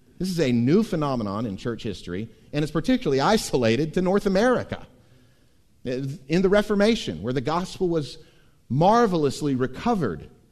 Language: English